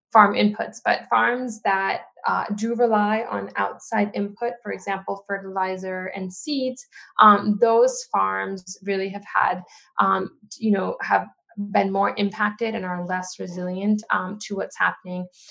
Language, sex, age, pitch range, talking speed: English, female, 20-39, 195-220 Hz, 145 wpm